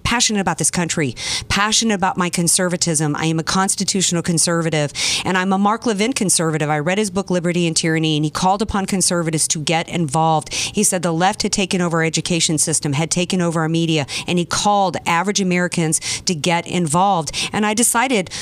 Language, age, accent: English, 40-59, American